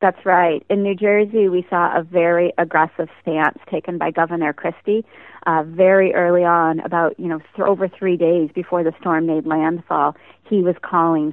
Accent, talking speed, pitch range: American, 180 wpm, 165-190 Hz